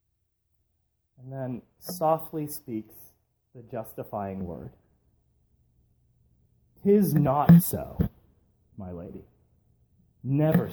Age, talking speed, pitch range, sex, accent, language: 40-59, 75 wpm, 100-140 Hz, male, American, English